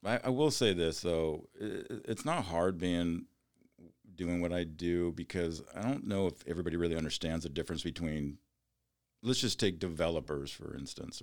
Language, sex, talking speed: English, male, 160 wpm